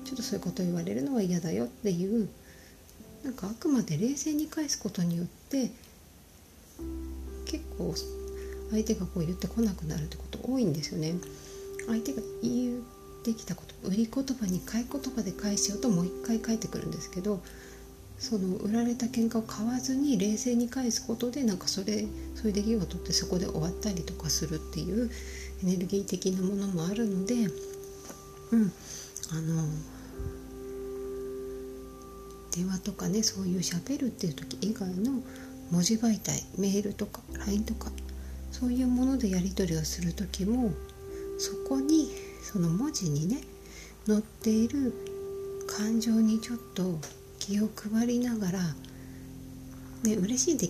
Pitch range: 160-235 Hz